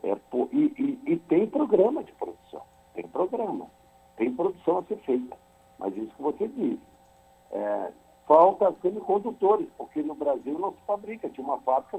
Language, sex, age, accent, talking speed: Portuguese, male, 60-79, Brazilian, 160 wpm